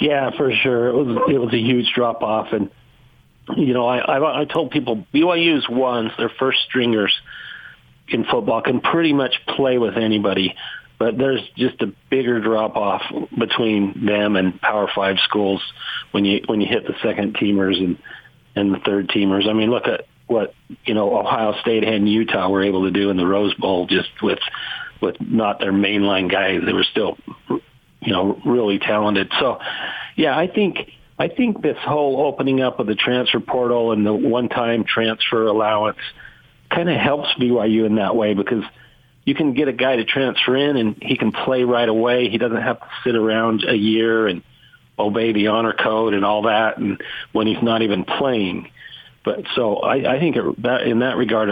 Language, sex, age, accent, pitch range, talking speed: English, male, 40-59, American, 105-125 Hz, 190 wpm